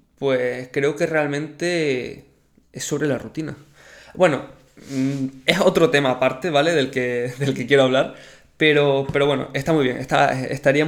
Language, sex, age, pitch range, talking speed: Spanish, male, 20-39, 130-160 Hz, 155 wpm